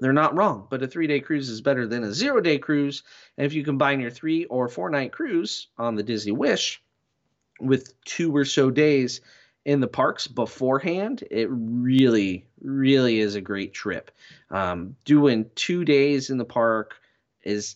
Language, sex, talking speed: English, male, 170 wpm